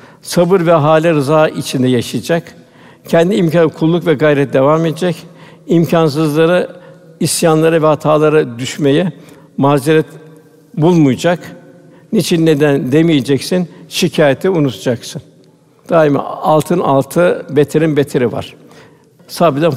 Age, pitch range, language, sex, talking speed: 60-79, 145-170 Hz, Turkish, male, 95 wpm